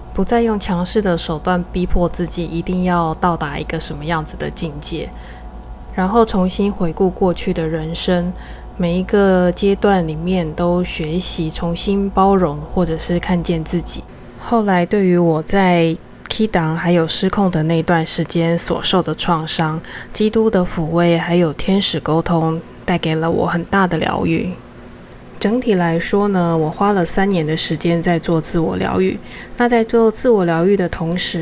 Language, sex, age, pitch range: Chinese, female, 20-39, 165-195 Hz